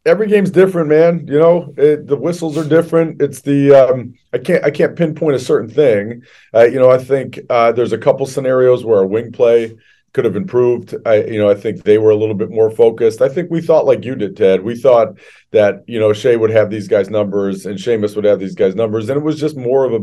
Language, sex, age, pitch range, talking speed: English, male, 40-59, 105-160 Hz, 250 wpm